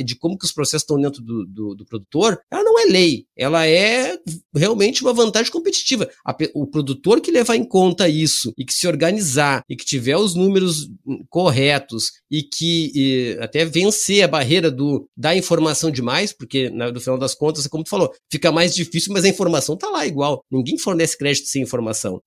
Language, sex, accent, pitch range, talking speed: Portuguese, male, Brazilian, 140-190 Hz, 190 wpm